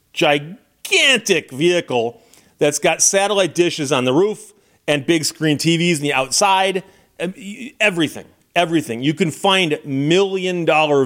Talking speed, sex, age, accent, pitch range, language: 120 wpm, male, 40-59, American, 135-195 Hz, English